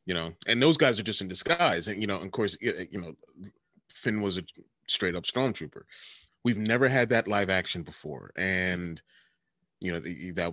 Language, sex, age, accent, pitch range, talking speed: English, male, 30-49, American, 90-120 Hz, 195 wpm